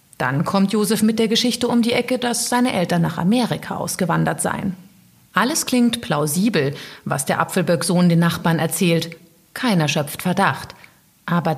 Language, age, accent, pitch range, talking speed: German, 30-49, German, 170-225 Hz, 150 wpm